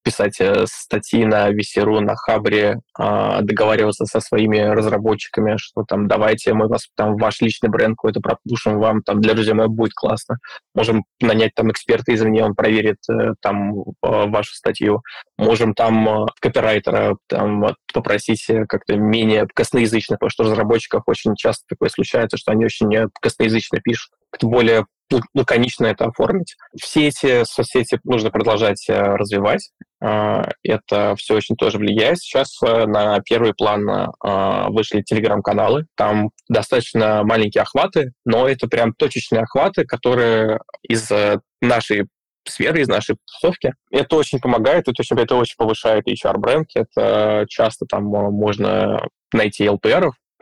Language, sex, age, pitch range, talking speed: Russian, male, 20-39, 105-115 Hz, 130 wpm